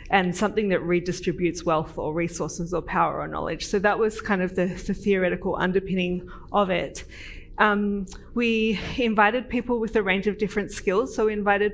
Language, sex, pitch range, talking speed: English, female, 185-215 Hz, 175 wpm